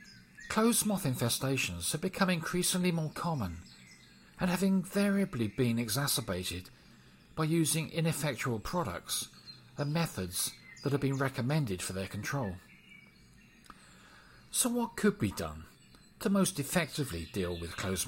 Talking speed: 125 wpm